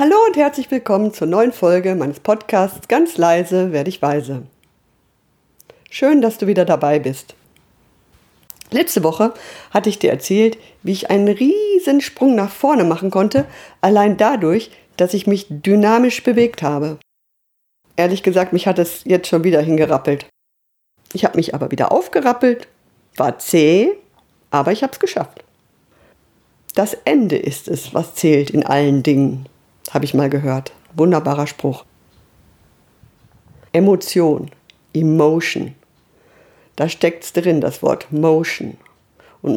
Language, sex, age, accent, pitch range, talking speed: German, female, 50-69, German, 160-230 Hz, 135 wpm